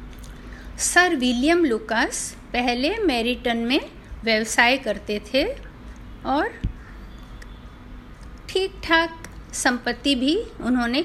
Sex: female